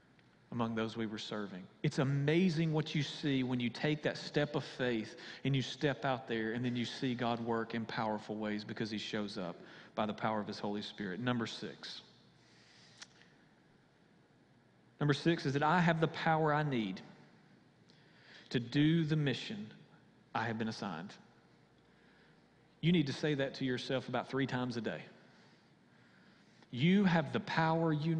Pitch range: 120-160 Hz